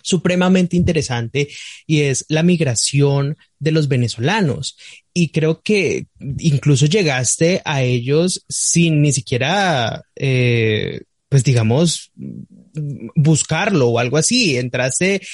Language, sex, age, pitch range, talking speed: Spanish, male, 20-39, 135-170 Hz, 105 wpm